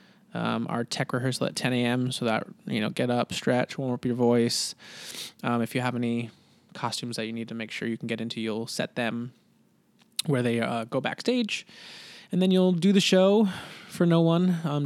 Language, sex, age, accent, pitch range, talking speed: English, male, 20-39, American, 115-150 Hz, 210 wpm